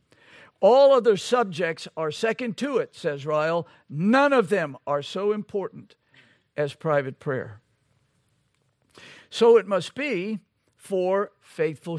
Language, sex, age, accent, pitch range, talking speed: English, male, 60-79, American, 130-205 Hz, 120 wpm